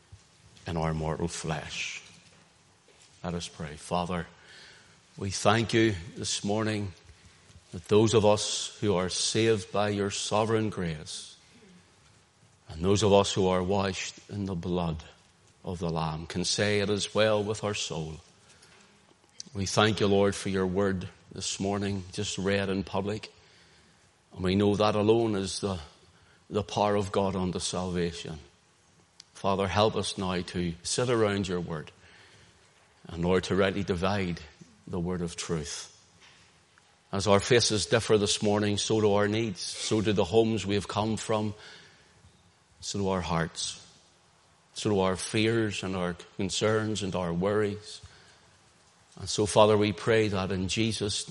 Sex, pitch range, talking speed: male, 90-105 Hz, 150 wpm